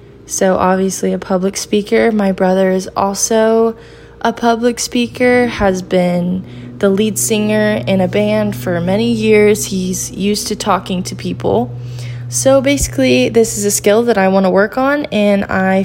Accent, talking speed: American, 165 wpm